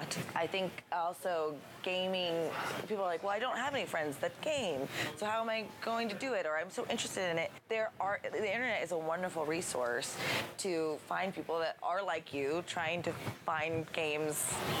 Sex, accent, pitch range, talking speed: female, American, 160-210 Hz, 195 wpm